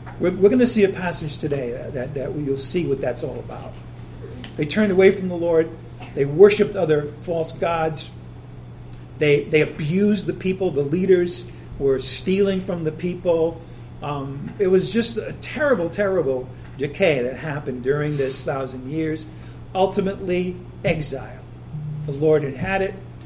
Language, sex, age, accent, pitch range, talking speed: English, male, 50-69, American, 125-170 Hz, 155 wpm